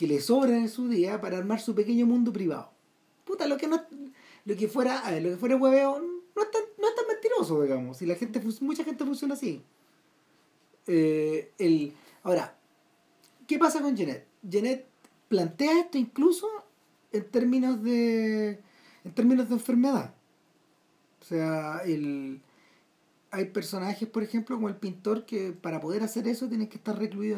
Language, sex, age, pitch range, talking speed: Spanish, male, 40-59, 180-260 Hz, 170 wpm